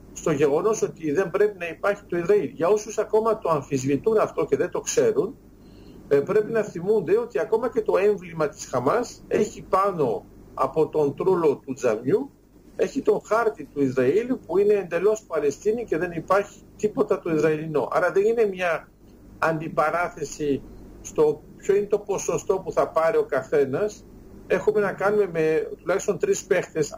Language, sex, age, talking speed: Greek, male, 50-69, 160 wpm